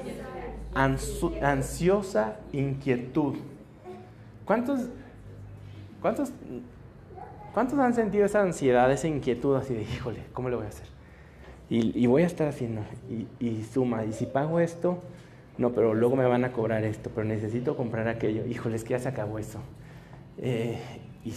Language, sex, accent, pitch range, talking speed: Spanish, male, Mexican, 120-195 Hz, 150 wpm